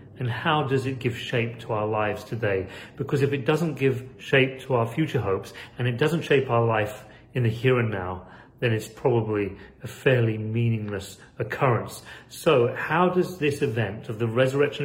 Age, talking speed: 40-59, 185 wpm